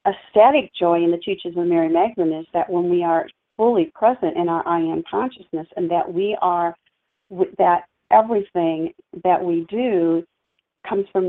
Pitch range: 170-205 Hz